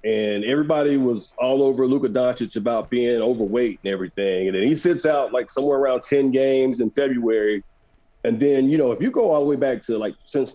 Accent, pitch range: American, 115-175 Hz